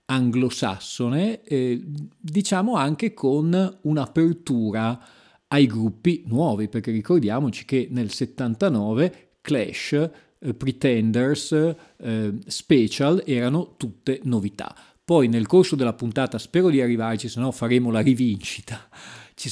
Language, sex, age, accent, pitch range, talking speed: Italian, male, 40-59, native, 115-145 Hz, 105 wpm